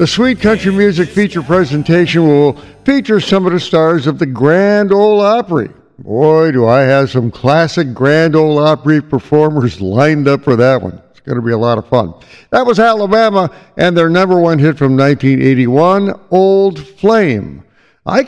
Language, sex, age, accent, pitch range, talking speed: English, male, 60-79, American, 135-185 Hz, 175 wpm